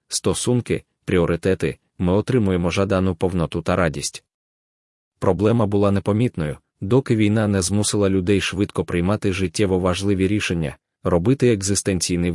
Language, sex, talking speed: Ukrainian, male, 110 wpm